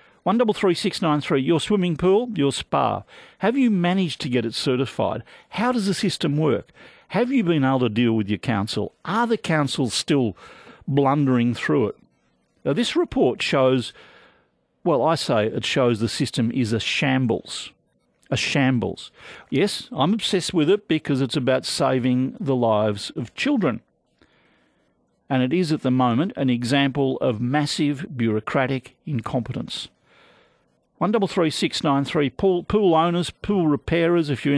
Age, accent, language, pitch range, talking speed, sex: 50-69, Australian, English, 120-170 Hz, 150 wpm, male